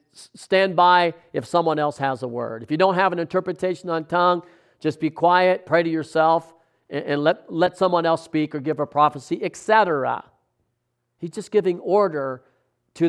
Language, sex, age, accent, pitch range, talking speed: English, male, 50-69, American, 125-160 Hz, 175 wpm